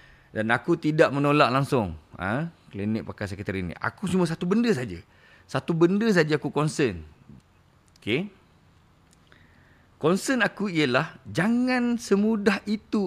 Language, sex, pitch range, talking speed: Malay, male, 115-175 Hz, 125 wpm